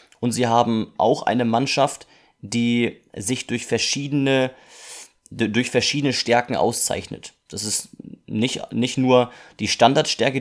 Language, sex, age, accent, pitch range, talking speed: German, male, 30-49, German, 110-130 Hz, 115 wpm